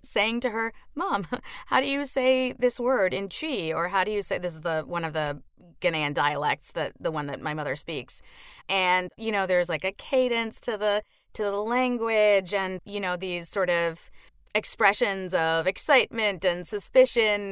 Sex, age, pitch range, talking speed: female, 30-49, 150-195 Hz, 190 wpm